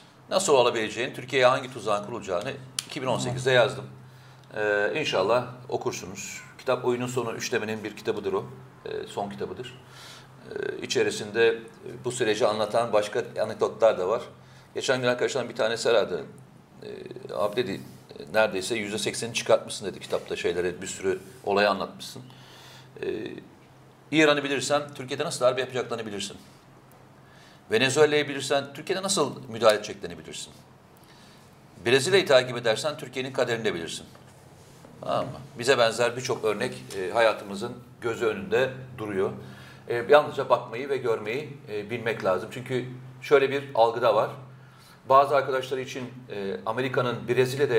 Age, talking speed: 40-59, 125 wpm